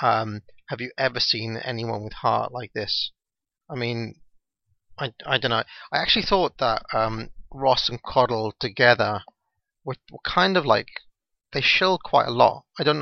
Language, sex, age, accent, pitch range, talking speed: English, male, 30-49, British, 115-140 Hz, 170 wpm